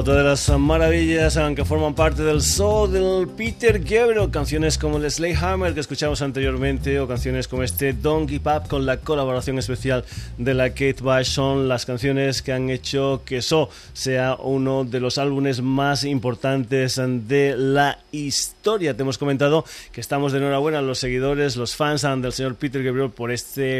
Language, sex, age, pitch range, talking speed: Spanish, male, 20-39, 120-140 Hz, 175 wpm